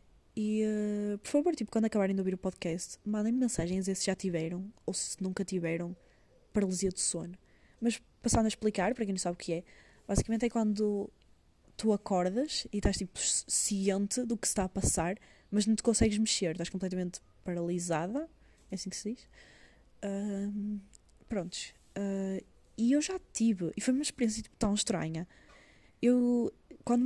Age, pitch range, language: 20-39, 180-210 Hz, Portuguese